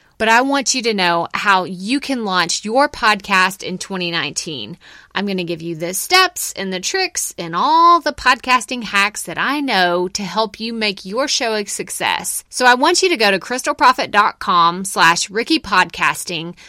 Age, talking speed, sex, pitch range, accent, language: 20-39, 180 wpm, female, 185-265 Hz, American, English